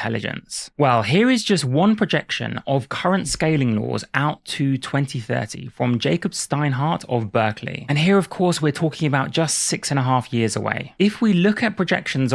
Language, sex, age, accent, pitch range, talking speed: German, male, 20-39, British, 125-165 Hz, 185 wpm